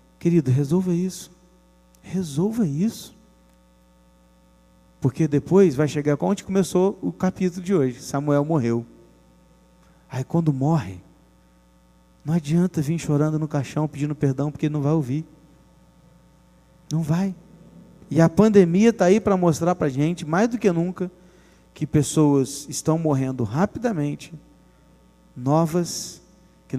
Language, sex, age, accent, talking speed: Portuguese, male, 40-59, Brazilian, 125 wpm